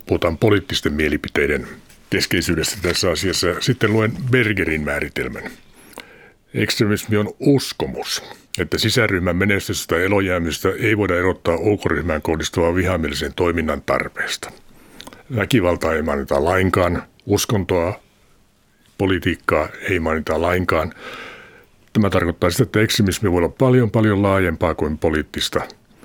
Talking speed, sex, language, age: 105 wpm, male, Finnish, 60-79